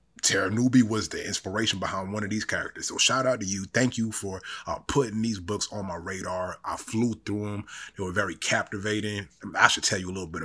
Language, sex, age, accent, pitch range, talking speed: English, male, 30-49, American, 95-110 Hz, 230 wpm